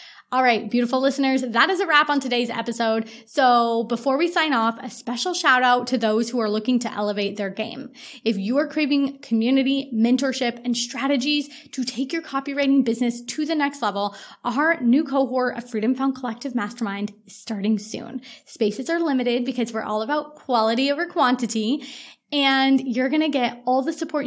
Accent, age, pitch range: American, 20-39, 220-270 Hz